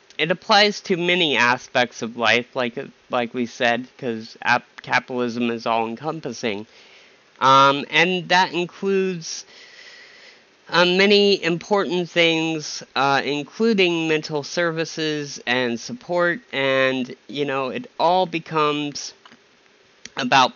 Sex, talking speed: male, 110 wpm